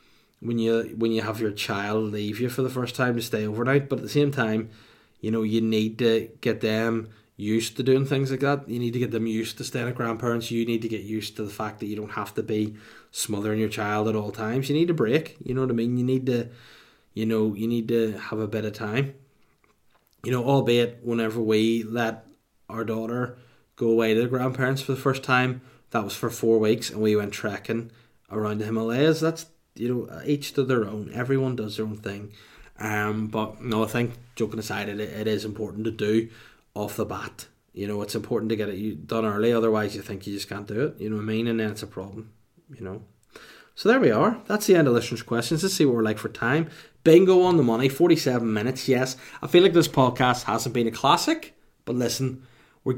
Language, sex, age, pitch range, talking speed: English, male, 20-39, 110-130 Hz, 235 wpm